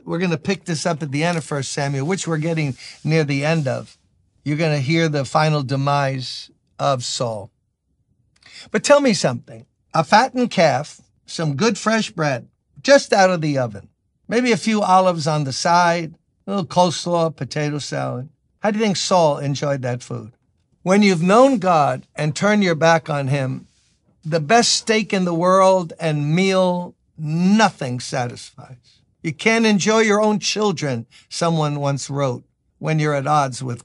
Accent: American